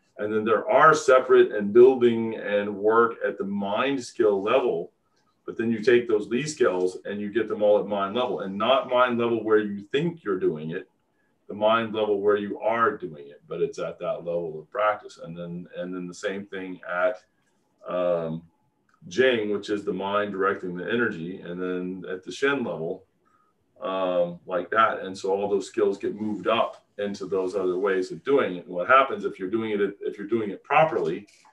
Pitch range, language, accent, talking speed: 95-150 Hz, English, American, 200 wpm